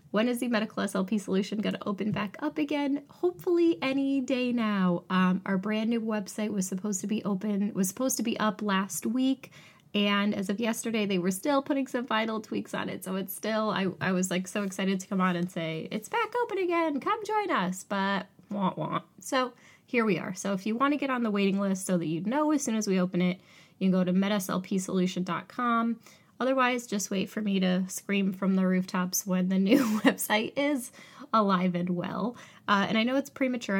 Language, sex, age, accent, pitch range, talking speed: English, female, 20-39, American, 185-230 Hz, 220 wpm